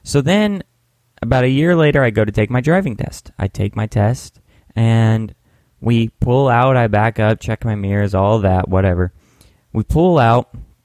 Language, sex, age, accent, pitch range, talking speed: English, male, 10-29, American, 100-120 Hz, 185 wpm